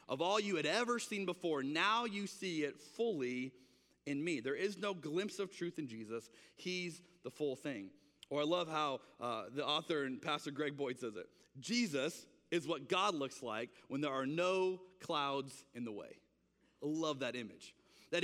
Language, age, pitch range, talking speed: English, 30-49, 140-210 Hz, 190 wpm